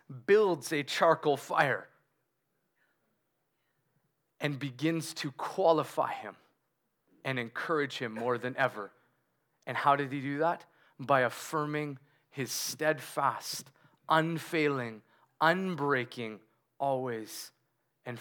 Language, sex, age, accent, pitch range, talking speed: English, male, 30-49, American, 160-230 Hz, 95 wpm